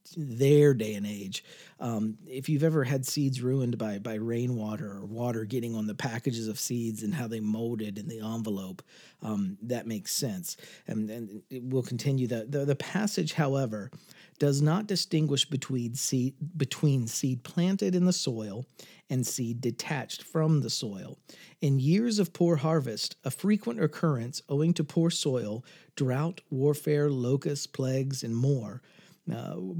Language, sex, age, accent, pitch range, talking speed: English, male, 40-59, American, 125-165 Hz, 155 wpm